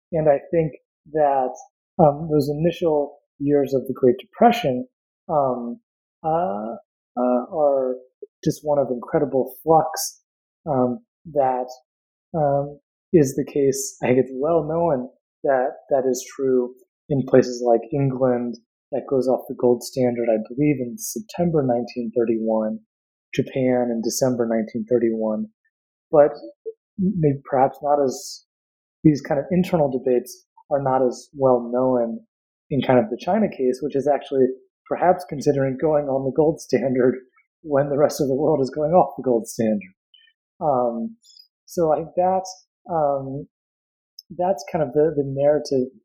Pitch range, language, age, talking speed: 125-160 Hz, English, 30-49, 145 wpm